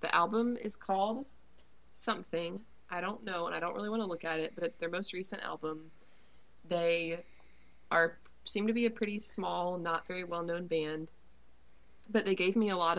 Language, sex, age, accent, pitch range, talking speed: English, female, 20-39, American, 155-195 Hz, 190 wpm